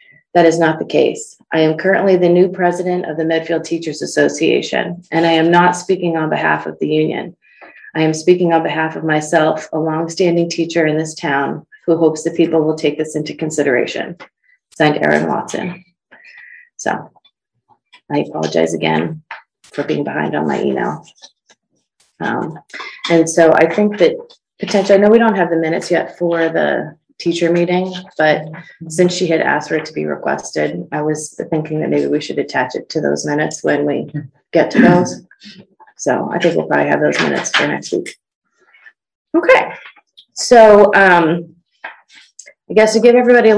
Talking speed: 175 wpm